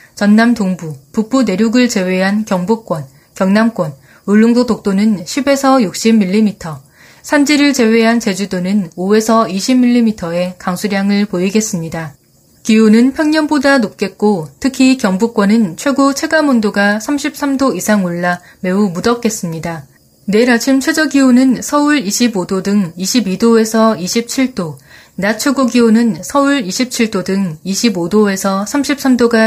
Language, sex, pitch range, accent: Korean, female, 185-245 Hz, native